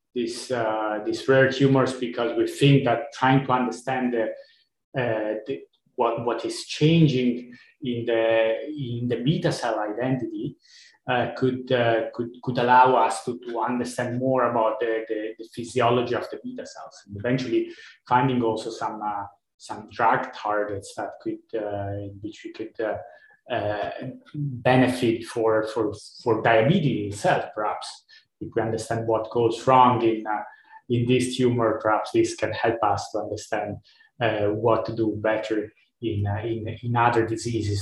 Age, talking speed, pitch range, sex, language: 30-49, 160 wpm, 115-145 Hz, male, English